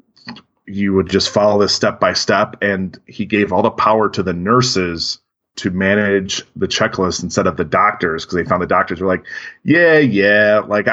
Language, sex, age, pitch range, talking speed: English, male, 30-49, 95-115 Hz, 190 wpm